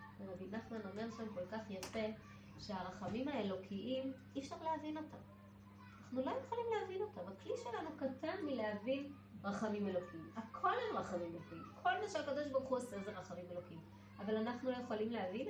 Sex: female